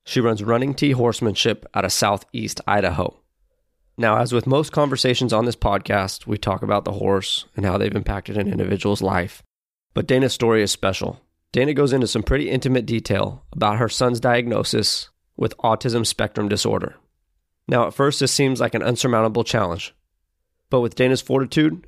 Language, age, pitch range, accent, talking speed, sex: English, 30-49, 105-130 Hz, American, 170 wpm, male